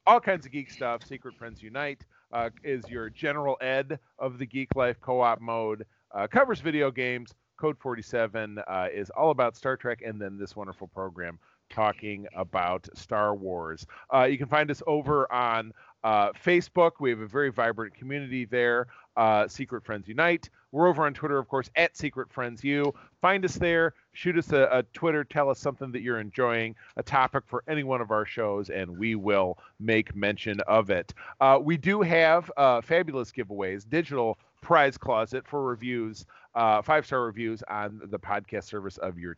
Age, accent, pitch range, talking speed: 30-49, American, 105-140 Hz, 185 wpm